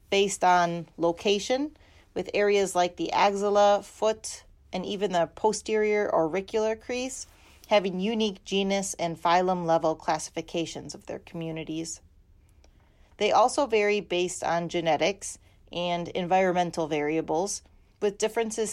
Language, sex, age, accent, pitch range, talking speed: English, female, 30-49, American, 160-210 Hz, 115 wpm